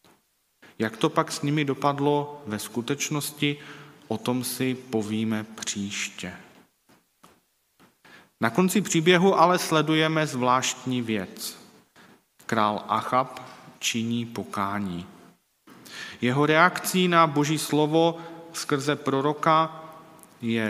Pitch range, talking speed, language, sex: 110-150 Hz, 95 wpm, Czech, male